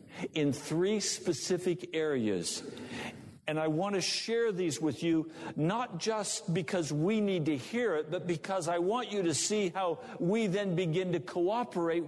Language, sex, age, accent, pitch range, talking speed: English, male, 60-79, American, 135-180 Hz, 165 wpm